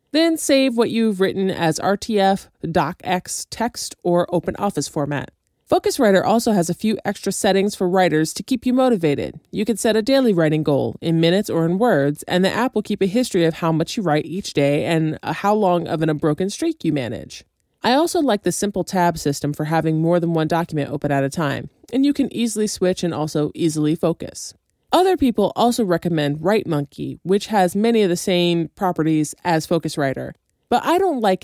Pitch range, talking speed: 160-225 Hz, 200 wpm